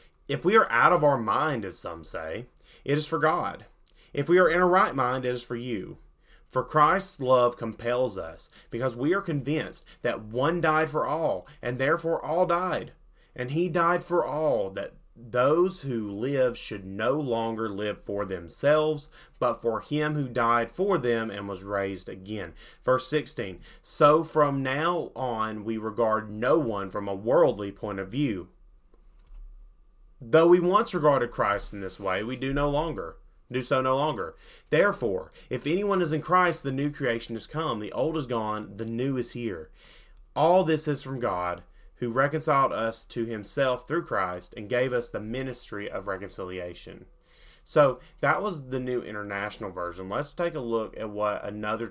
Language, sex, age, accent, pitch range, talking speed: English, male, 30-49, American, 105-150 Hz, 175 wpm